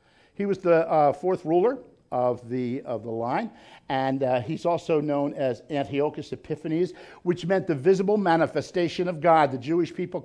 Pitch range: 165-220 Hz